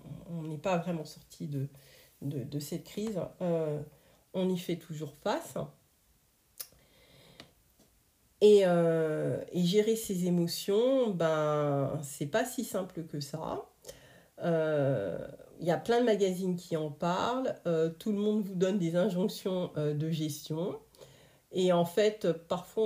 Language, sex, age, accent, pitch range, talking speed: French, female, 50-69, French, 150-190 Hz, 140 wpm